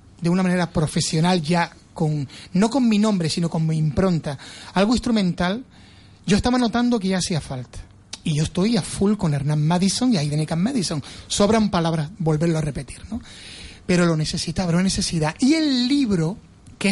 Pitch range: 150-200 Hz